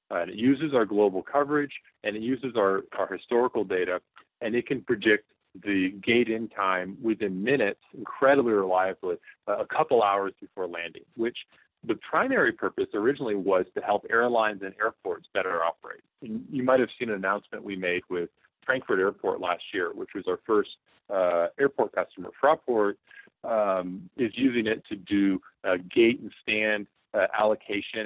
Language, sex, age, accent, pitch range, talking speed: English, male, 40-59, American, 95-145 Hz, 165 wpm